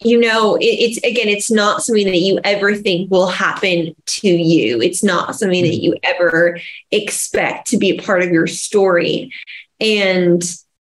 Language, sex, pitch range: English, female, 185-230 Hz